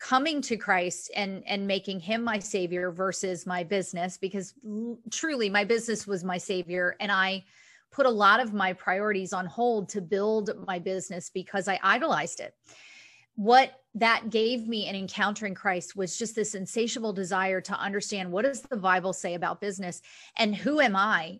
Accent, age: American, 40-59